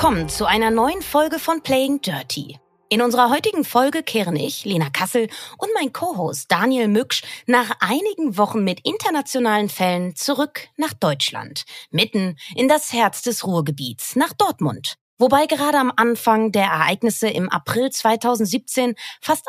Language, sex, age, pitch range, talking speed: German, female, 30-49, 190-265 Hz, 150 wpm